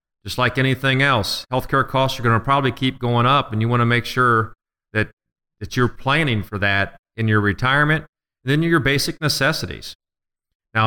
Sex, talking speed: male, 190 wpm